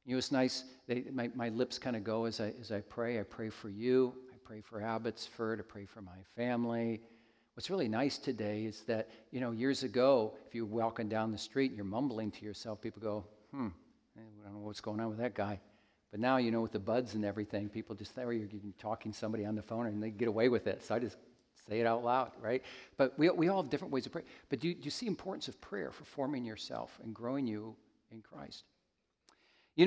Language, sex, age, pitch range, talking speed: English, male, 50-69, 110-160 Hz, 245 wpm